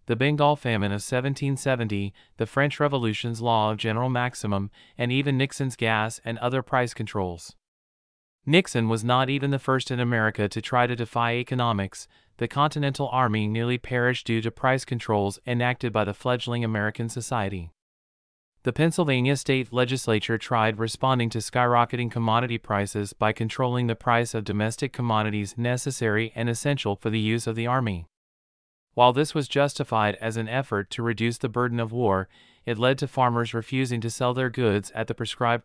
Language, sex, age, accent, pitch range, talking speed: English, male, 30-49, American, 110-130 Hz, 165 wpm